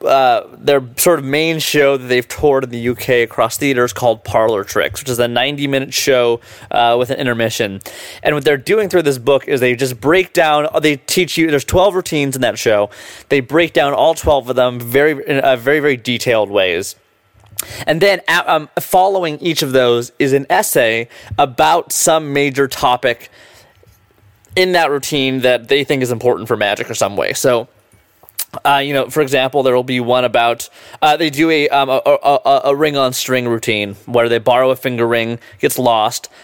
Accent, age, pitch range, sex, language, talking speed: American, 20-39, 120-150 Hz, male, English, 200 wpm